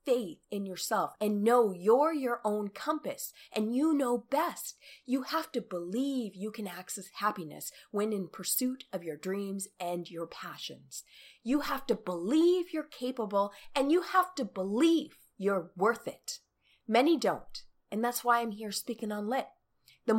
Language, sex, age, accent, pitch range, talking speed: English, female, 30-49, American, 195-255 Hz, 165 wpm